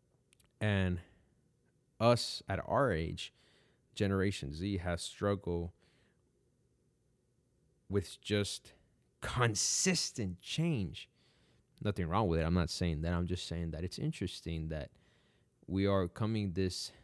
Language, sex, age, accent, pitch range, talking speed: English, male, 20-39, American, 85-105 Hz, 115 wpm